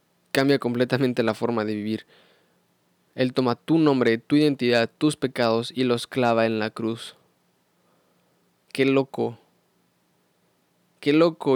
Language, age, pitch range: Spanish, 20-39, 120-145 Hz